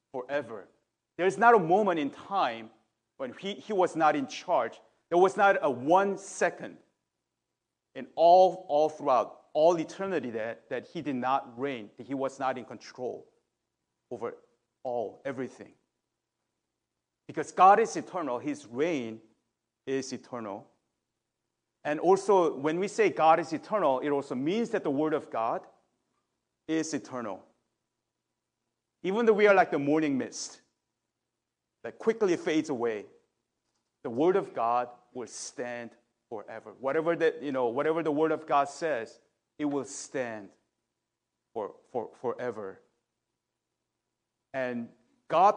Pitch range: 125-190 Hz